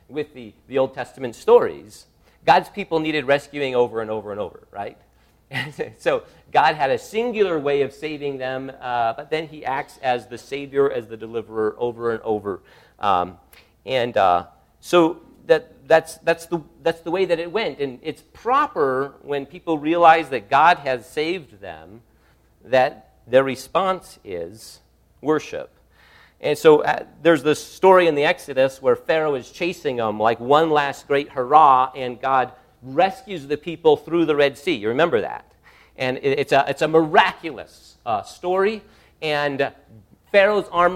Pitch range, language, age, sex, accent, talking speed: 130-185 Hz, English, 40-59, male, American, 160 wpm